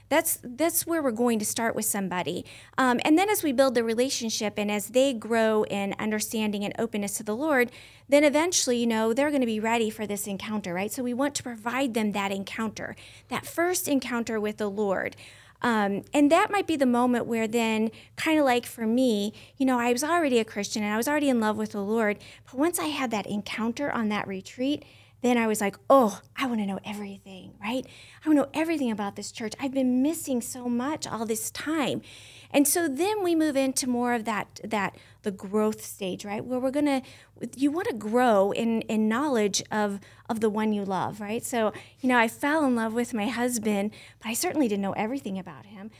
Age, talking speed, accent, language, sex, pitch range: 40-59, 225 wpm, American, English, female, 210-270 Hz